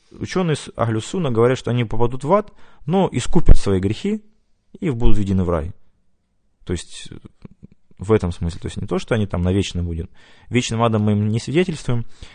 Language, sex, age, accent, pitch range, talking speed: Russian, male, 20-39, native, 95-120 Hz, 190 wpm